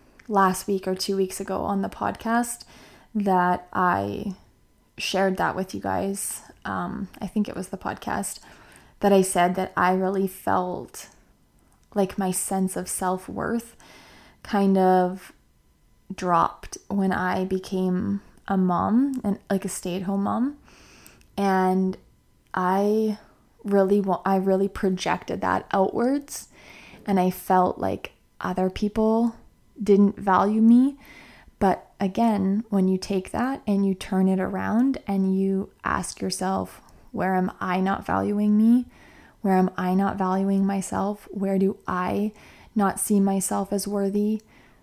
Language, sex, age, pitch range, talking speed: English, female, 20-39, 185-205 Hz, 140 wpm